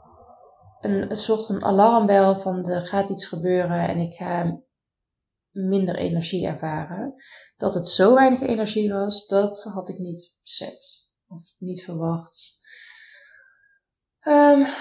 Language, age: Dutch, 20-39